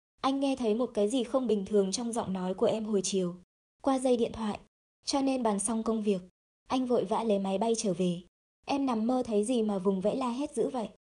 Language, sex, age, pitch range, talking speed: Vietnamese, male, 20-39, 200-245 Hz, 250 wpm